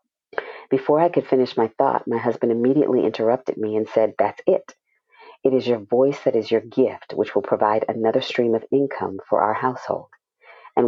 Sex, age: female, 40-59